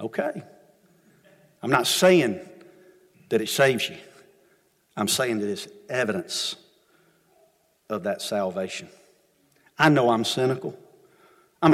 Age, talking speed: 50-69, 105 wpm